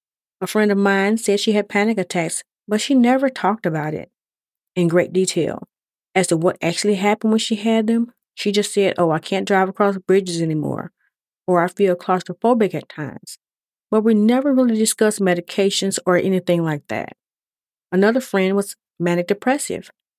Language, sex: English, female